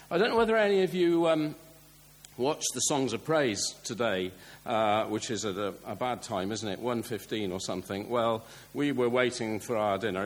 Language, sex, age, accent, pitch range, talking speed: English, male, 50-69, British, 110-145 Hz, 205 wpm